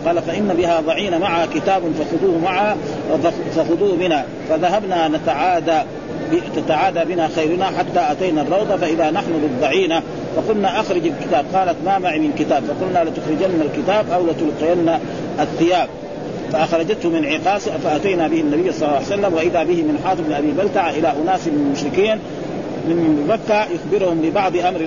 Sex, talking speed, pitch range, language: male, 145 wpm, 160-195 Hz, Arabic